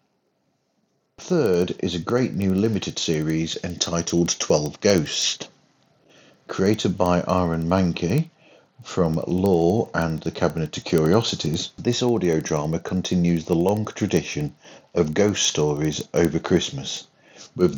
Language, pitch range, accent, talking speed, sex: English, 80-95 Hz, British, 115 wpm, male